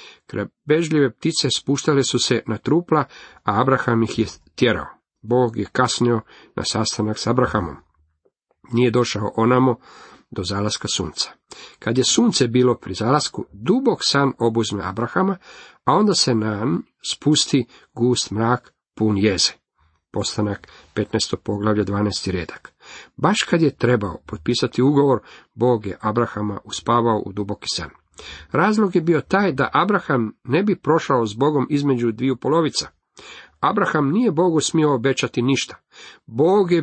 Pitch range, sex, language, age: 110-150 Hz, male, Croatian, 50-69